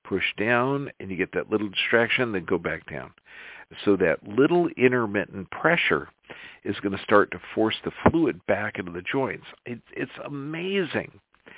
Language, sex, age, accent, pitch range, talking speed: English, male, 50-69, American, 95-125 Hz, 160 wpm